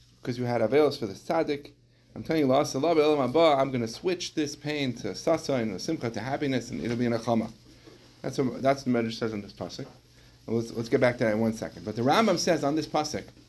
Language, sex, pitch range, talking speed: English, male, 120-155 Hz, 230 wpm